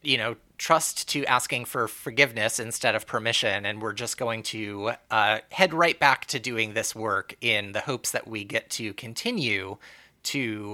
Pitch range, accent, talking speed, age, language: 110-135 Hz, American, 180 wpm, 30-49, English